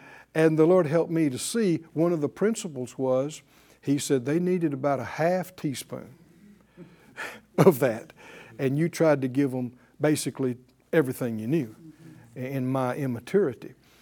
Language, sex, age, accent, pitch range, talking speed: English, male, 60-79, American, 145-205 Hz, 150 wpm